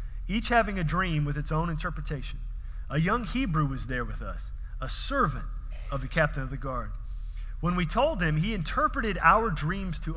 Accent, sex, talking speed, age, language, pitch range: American, male, 190 wpm, 40-59, English, 145-195 Hz